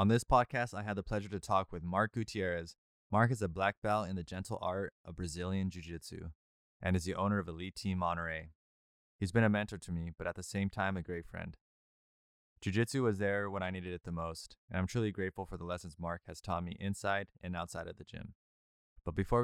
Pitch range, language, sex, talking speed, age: 85-105 Hz, English, male, 230 wpm, 20-39